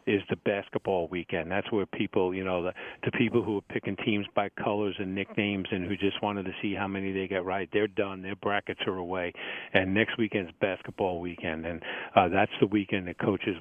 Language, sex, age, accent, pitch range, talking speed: English, male, 50-69, American, 95-105 Hz, 220 wpm